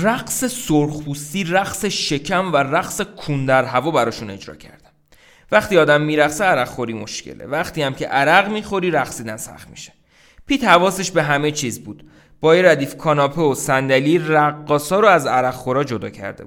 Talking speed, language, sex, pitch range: 150 wpm, Persian, male, 115-150 Hz